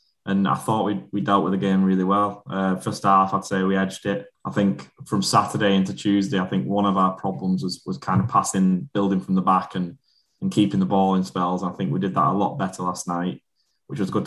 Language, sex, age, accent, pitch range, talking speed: English, male, 10-29, British, 95-105 Hz, 250 wpm